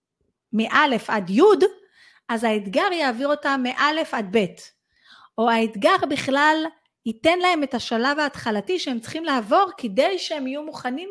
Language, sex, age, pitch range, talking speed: Hebrew, female, 30-49, 205-275 Hz, 135 wpm